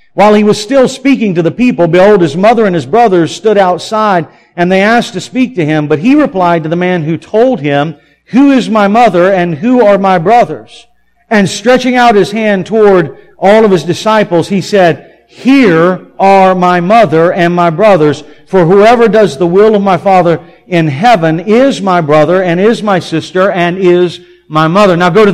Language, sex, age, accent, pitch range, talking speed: English, male, 50-69, American, 170-215 Hz, 200 wpm